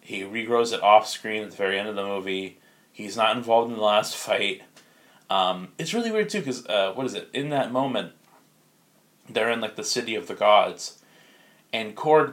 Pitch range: 105-130 Hz